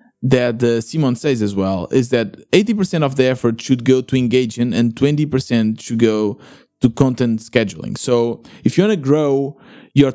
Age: 20-39